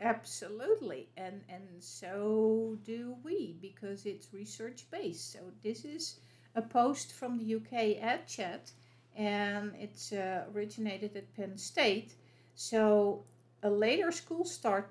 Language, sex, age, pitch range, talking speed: English, female, 50-69, 170-230 Hz, 125 wpm